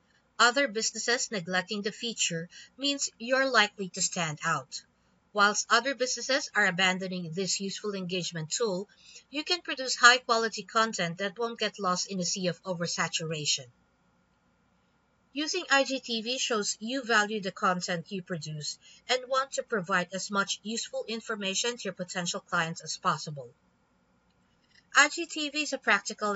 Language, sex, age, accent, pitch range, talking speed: English, female, 50-69, Filipino, 180-235 Hz, 140 wpm